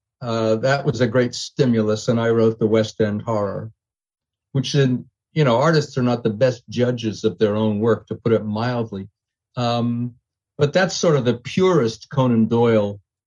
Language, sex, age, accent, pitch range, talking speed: English, male, 50-69, American, 115-155 Hz, 175 wpm